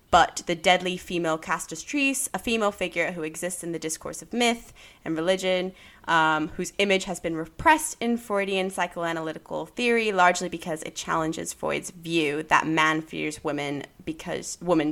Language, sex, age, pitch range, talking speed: English, female, 20-39, 155-185 Hz, 160 wpm